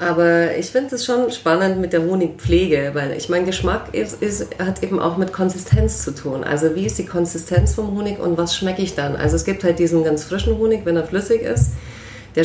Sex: female